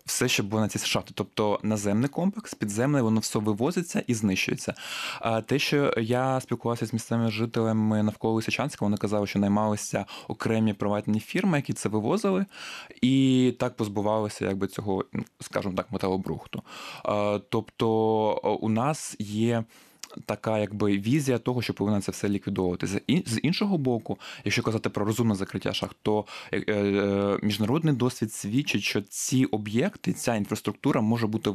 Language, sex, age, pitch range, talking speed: Ukrainian, male, 20-39, 105-120 Hz, 140 wpm